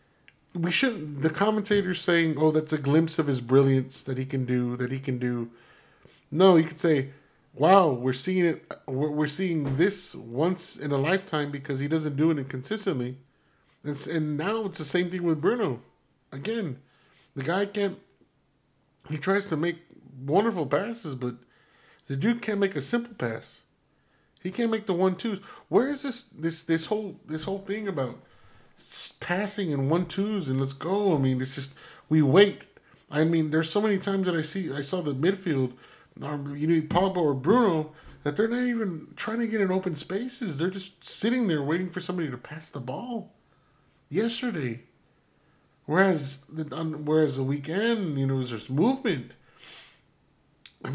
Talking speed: 175 wpm